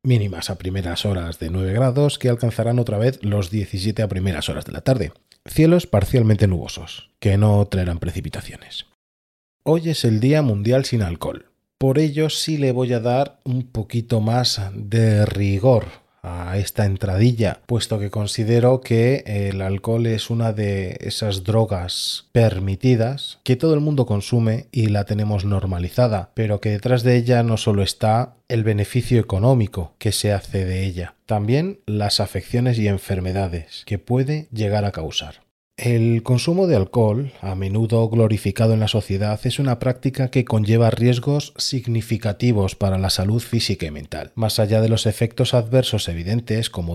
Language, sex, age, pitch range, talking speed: English, male, 30-49, 100-125 Hz, 160 wpm